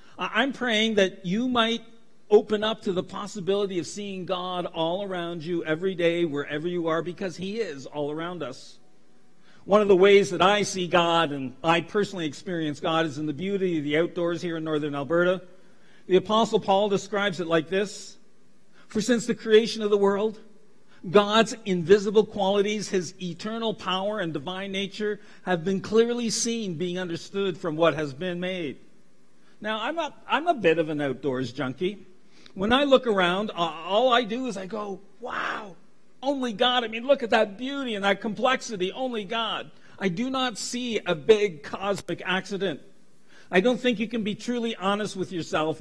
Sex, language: male, English